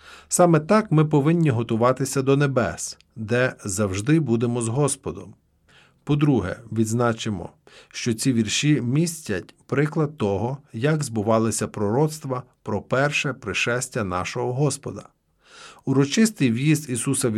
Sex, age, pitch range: male, 40-59, 115-150 Hz